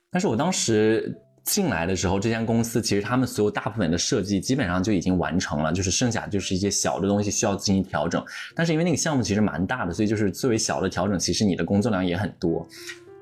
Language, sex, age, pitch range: Chinese, male, 20-39, 90-125 Hz